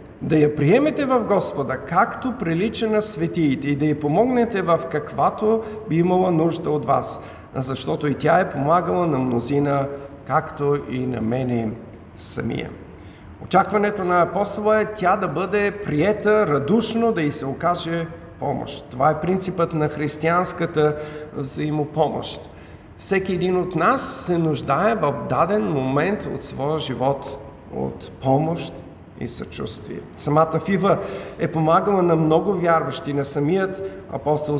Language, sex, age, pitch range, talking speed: Bulgarian, male, 50-69, 135-185 Hz, 135 wpm